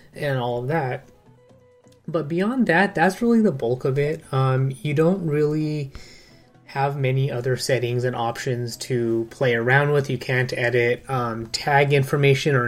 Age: 20-39